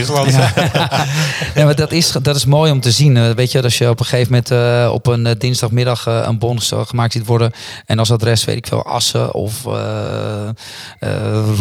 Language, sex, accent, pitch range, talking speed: Dutch, male, Dutch, 105-120 Hz, 205 wpm